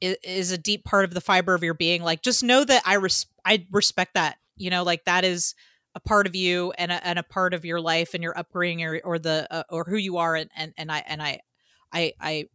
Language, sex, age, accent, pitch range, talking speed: English, female, 30-49, American, 175-225 Hz, 260 wpm